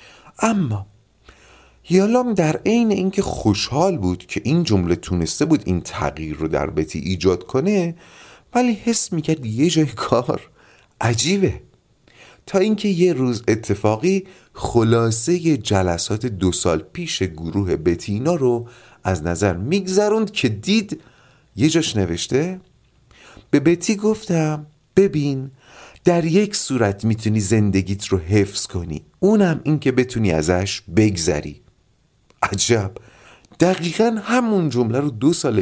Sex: male